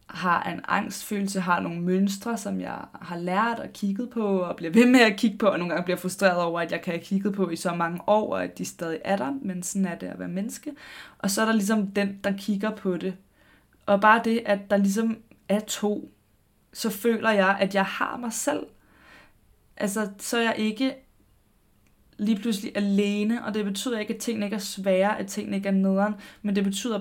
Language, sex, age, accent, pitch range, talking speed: Danish, female, 20-39, native, 190-215 Hz, 220 wpm